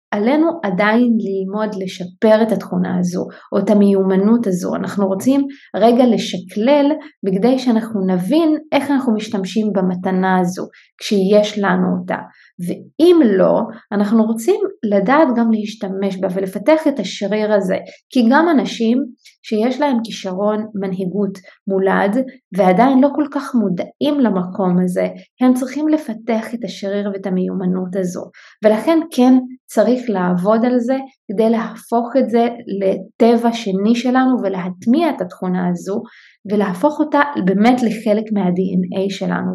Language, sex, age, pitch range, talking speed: Hebrew, female, 20-39, 195-260 Hz, 125 wpm